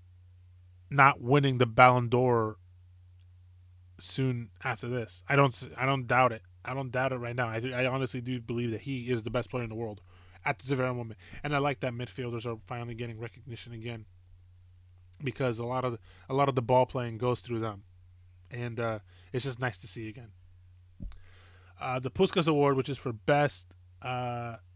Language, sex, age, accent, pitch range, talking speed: English, male, 20-39, American, 90-130 Hz, 190 wpm